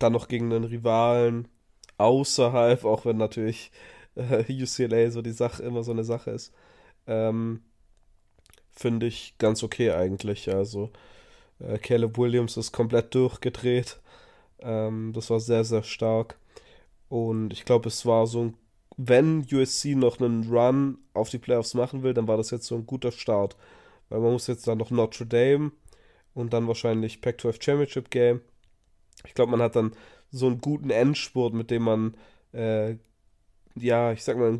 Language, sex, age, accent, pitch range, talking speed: German, male, 20-39, German, 105-120 Hz, 160 wpm